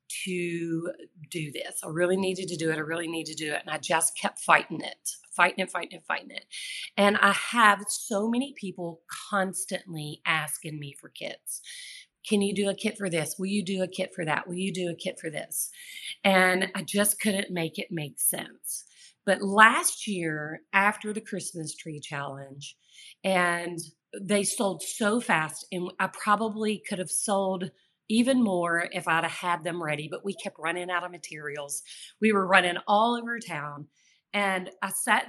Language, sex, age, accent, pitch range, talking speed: English, female, 40-59, American, 165-205 Hz, 185 wpm